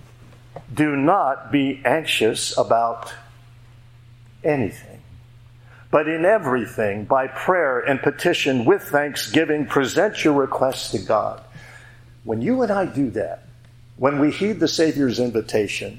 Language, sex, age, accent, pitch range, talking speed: English, male, 50-69, American, 120-150 Hz, 120 wpm